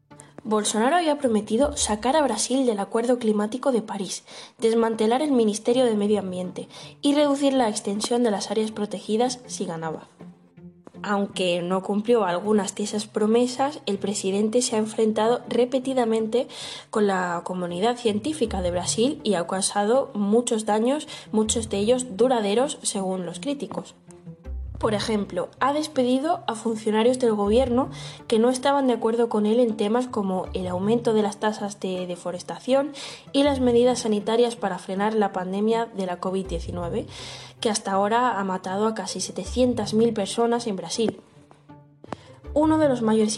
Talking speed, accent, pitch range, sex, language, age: 150 wpm, Spanish, 190-240 Hz, female, Spanish, 20-39